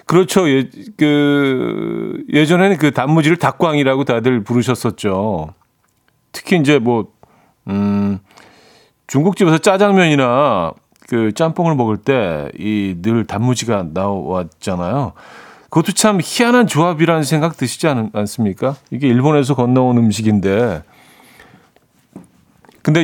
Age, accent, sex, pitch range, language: 40-59, native, male, 110-150 Hz, Korean